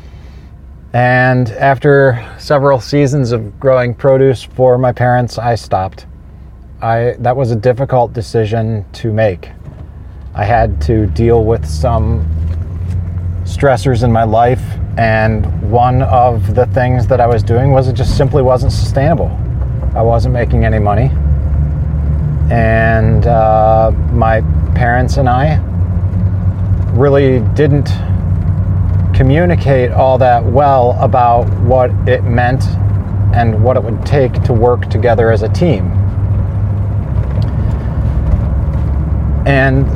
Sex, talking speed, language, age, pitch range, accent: male, 115 wpm, English, 30-49, 90-125 Hz, American